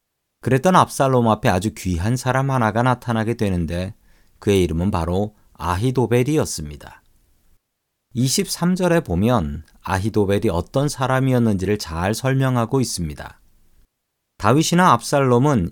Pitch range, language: 100-135 Hz, Korean